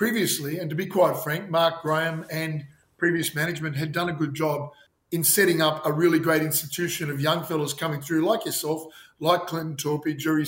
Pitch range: 150-170 Hz